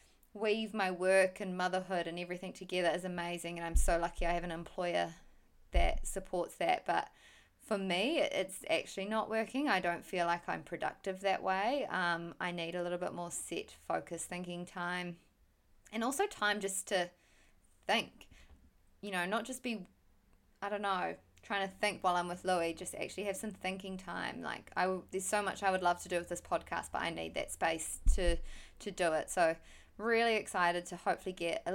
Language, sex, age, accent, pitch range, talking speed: English, female, 20-39, Australian, 170-200 Hz, 195 wpm